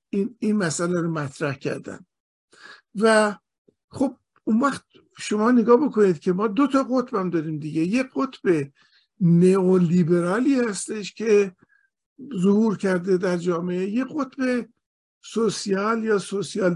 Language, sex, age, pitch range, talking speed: Persian, male, 50-69, 180-250 Hz, 120 wpm